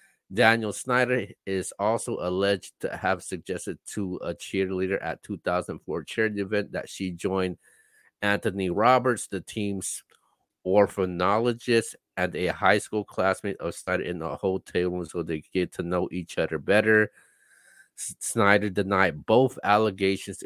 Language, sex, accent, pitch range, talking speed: English, male, American, 95-115 Hz, 135 wpm